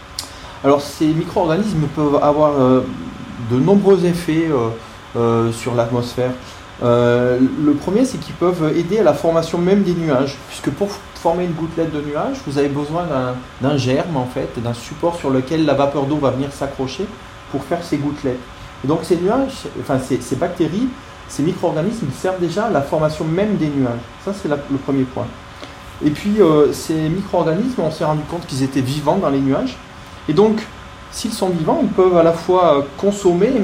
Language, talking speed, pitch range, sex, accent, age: French, 190 wpm, 130-170 Hz, male, French, 30-49